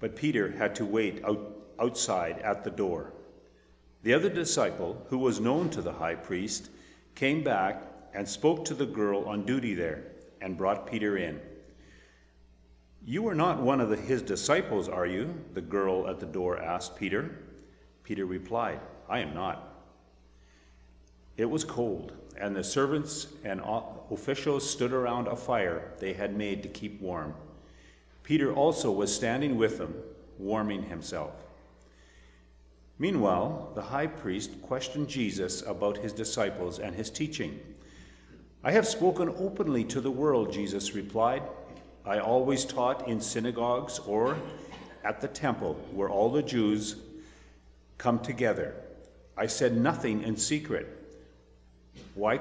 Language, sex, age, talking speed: English, male, 50-69, 140 wpm